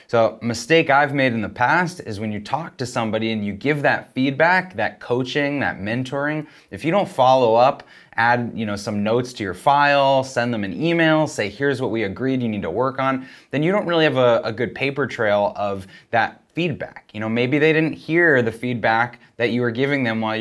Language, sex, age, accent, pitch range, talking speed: English, male, 20-39, American, 115-150 Hz, 225 wpm